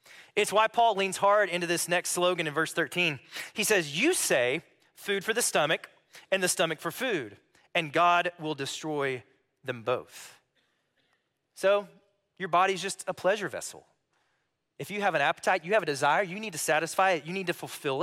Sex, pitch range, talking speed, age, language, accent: male, 150-195 Hz, 185 wpm, 30-49, English, American